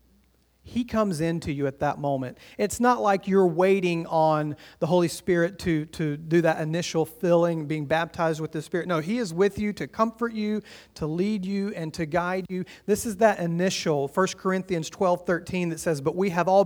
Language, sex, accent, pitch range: English, male, American, 160-200 Hz